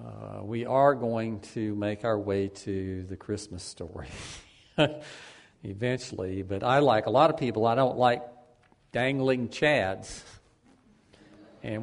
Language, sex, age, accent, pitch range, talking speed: English, male, 50-69, American, 105-120 Hz, 130 wpm